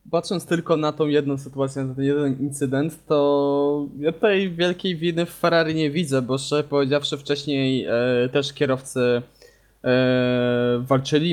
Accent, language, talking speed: native, Polish, 150 wpm